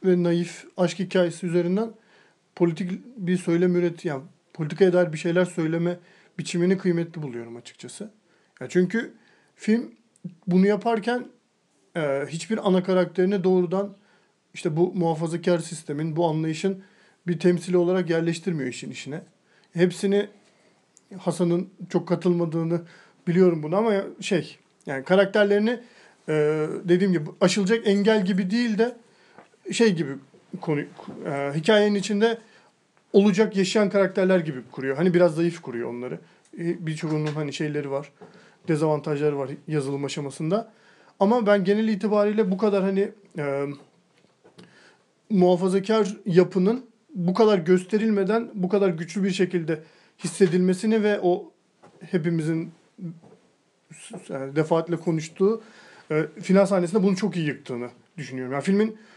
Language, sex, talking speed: Turkish, male, 120 wpm